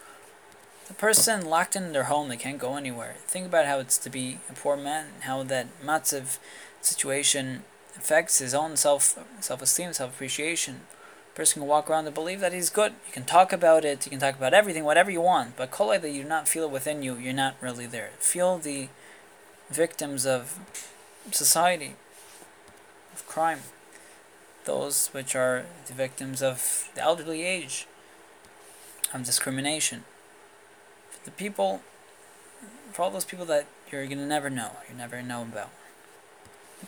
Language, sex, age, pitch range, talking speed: English, male, 20-39, 130-165 Hz, 165 wpm